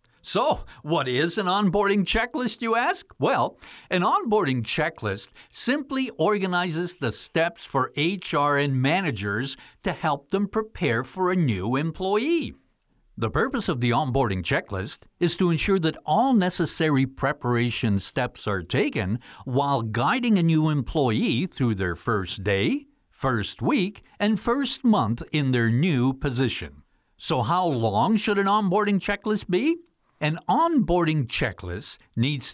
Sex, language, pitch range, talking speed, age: male, English, 120-200 Hz, 135 wpm, 60-79